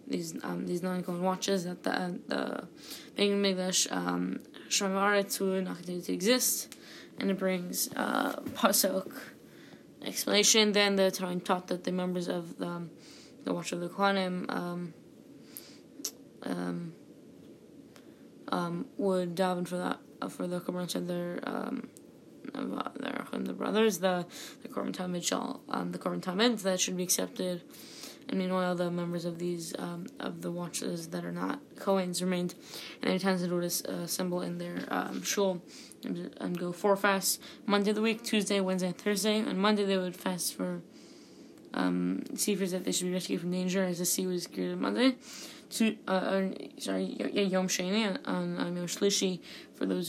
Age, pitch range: 20-39, 175-200 Hz